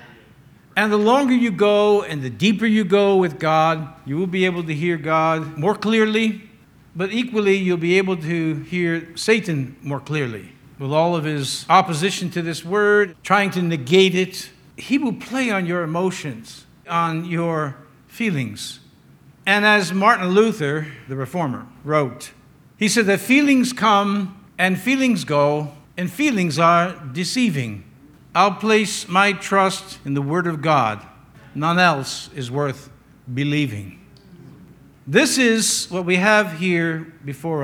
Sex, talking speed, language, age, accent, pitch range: male, 145 wpm, English, 60-79, American, 145-210 Hz